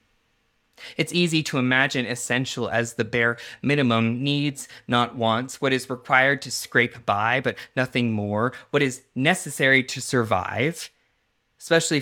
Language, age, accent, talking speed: English, 20-39, American, 135 wpm